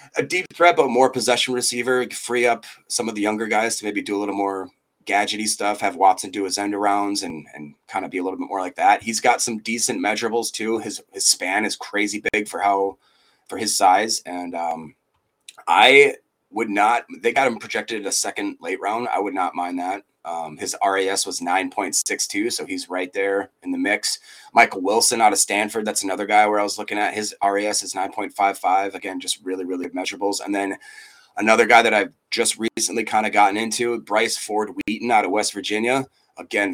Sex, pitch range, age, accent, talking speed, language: male, 100-120 Hz, 30-49, American, 210 wpm, English